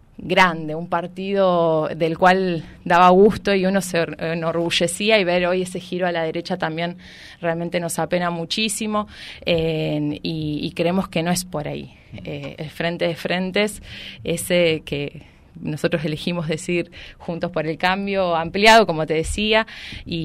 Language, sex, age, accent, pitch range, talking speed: Spanish, female, 20-39, Argentinian, 160-190 Hz, 155 wpm